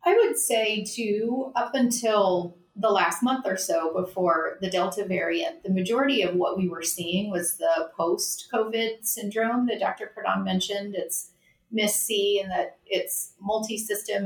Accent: American